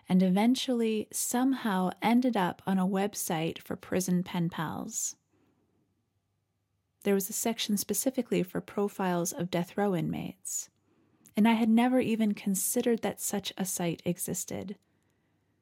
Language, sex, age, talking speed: English, female, 30-49, 130 wpm